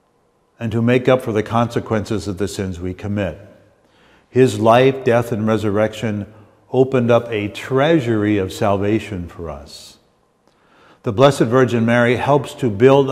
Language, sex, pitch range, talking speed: English, male, 95-120 Hz, 145 wpm